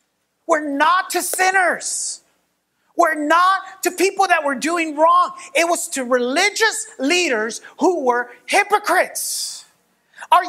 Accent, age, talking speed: American, 30-49, 120 wpm